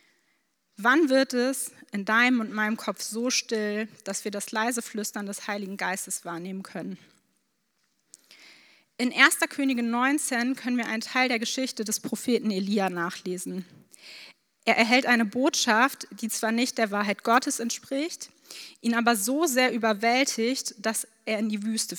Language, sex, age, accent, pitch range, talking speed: German, female, 20-39, German, 210-250 Hz, 150 wpm